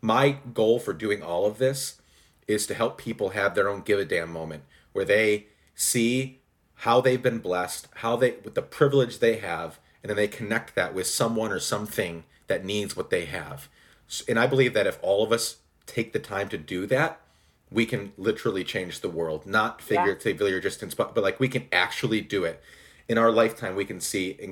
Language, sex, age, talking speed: English, male, 40-59, 210 wpm